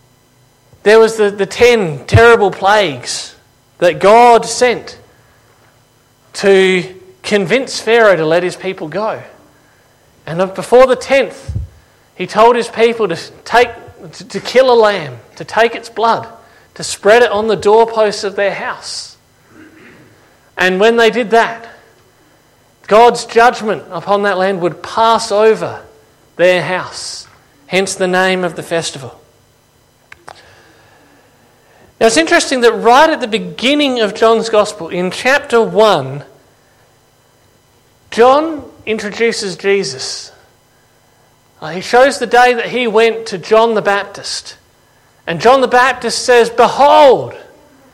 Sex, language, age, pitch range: male, English, 40-59, 135-230 Hz